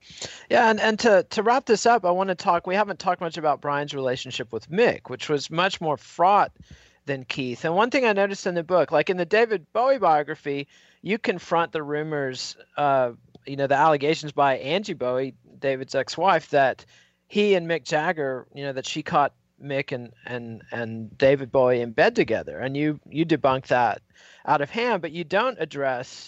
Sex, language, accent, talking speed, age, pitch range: male, English, American, 200 wpm, 40-59, 125-165 Hz